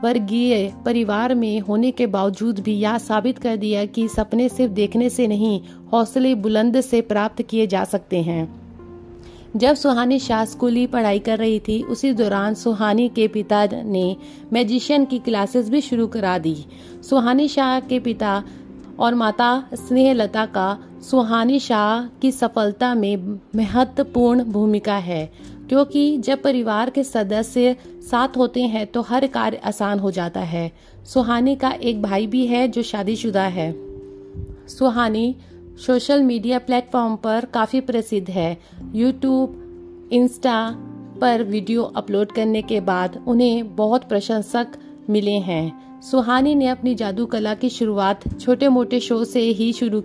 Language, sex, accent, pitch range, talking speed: Hindi, female, native, 205-250 Hz, 145 wpm